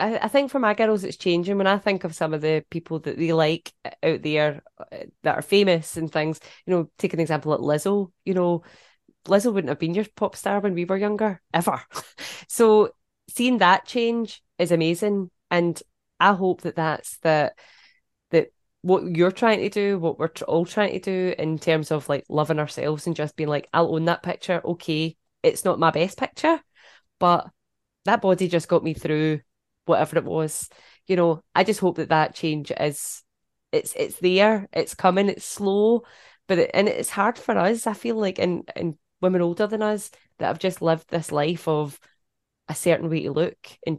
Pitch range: 160-200 Hz